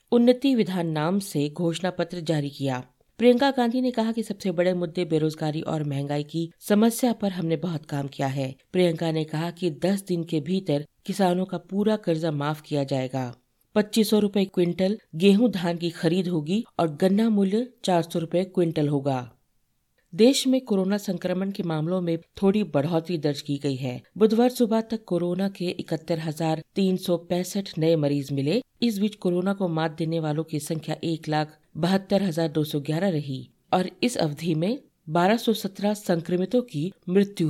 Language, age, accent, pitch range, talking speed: Hindi, 50-69, native, 160-200 Hz, 160 wpm